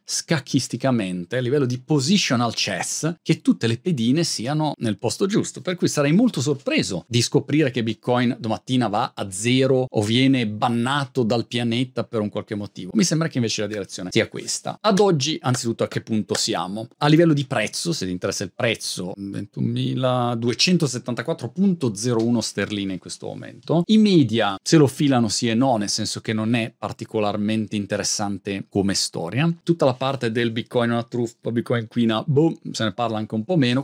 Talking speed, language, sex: 175 wpm, Italian, male